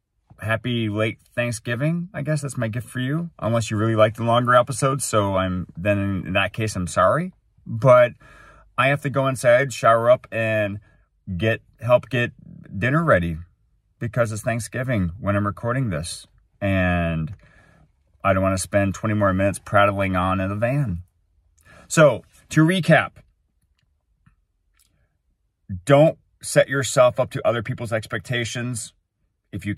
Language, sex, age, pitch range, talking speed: English, male, 30-49, 100-125 Hz, 145 wpm